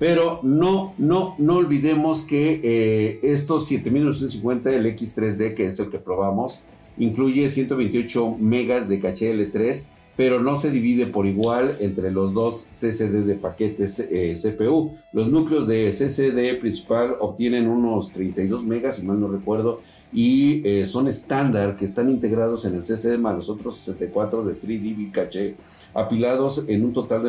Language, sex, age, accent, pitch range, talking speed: Spanish, male, 50-69, Mexican, 115-175 Hz, 155 wpm